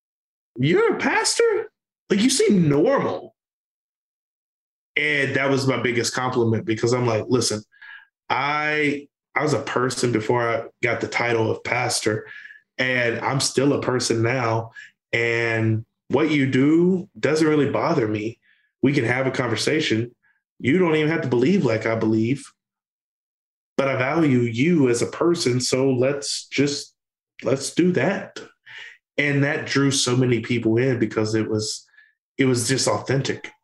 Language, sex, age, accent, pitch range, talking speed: English, male, 20-39, American, 115-135 Hz, 150 wpm